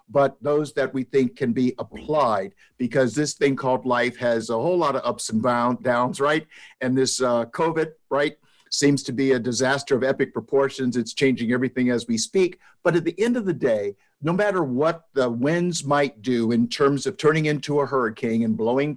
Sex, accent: male, American